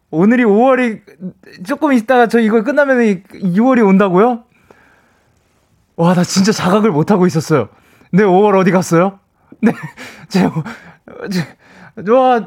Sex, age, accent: male, 20-39, native